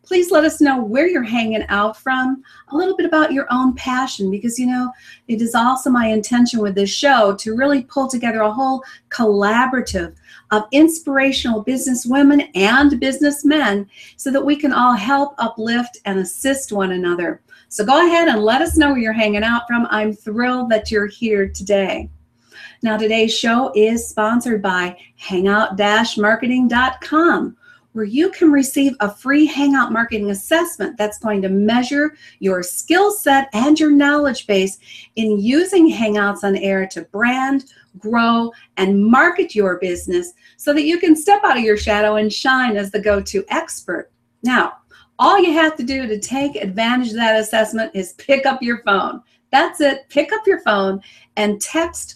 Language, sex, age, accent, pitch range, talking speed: English, female, 40-59, American, 210-280 Hz, 170 wpm